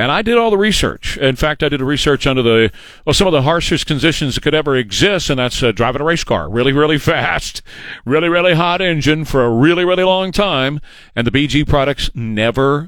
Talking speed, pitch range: 230 wpm, 115-165 Hz